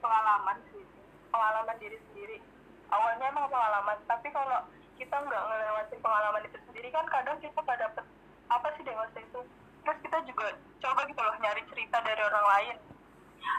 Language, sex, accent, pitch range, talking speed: Indonesian, female, native, 220-275 Hz, 155 wpm